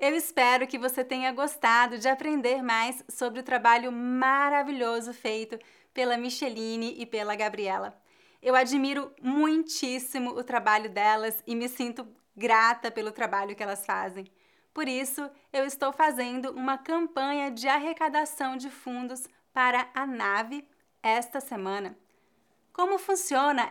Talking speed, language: 130 wpm, English